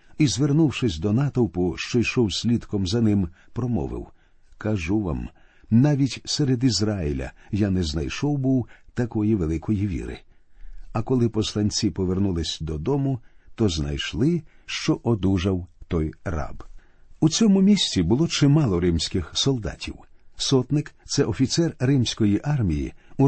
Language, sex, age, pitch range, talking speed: Ukrainian, male, 50-69, 95-140 Hz, 120 wpm